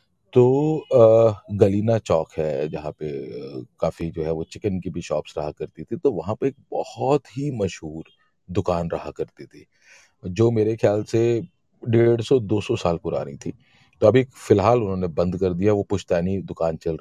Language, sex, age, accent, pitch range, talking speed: Hindi, male, 40-59, native, 90-130 Hz, 175 wpm